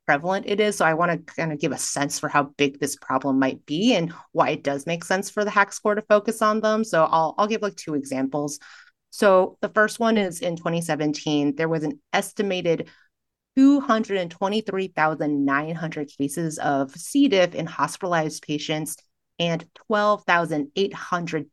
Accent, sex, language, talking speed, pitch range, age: American, female, English, 170 wpm, 155-215 Hz, 30-49